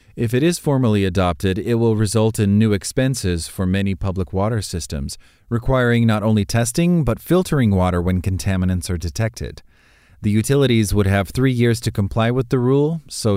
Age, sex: 30-49, male